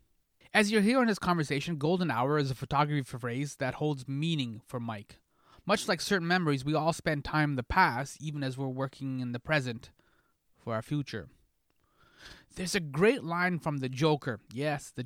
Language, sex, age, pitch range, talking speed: English, male, 20-39, 130-180 Hz, 185 wpm